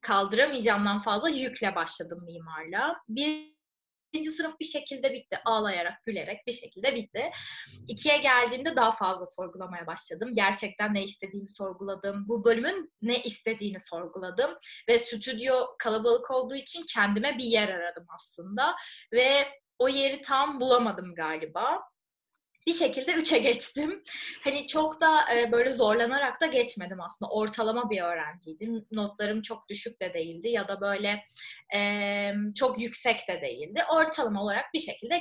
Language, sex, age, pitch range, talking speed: Turkish, female, 20-39, 200-270 Hz, 130 wpm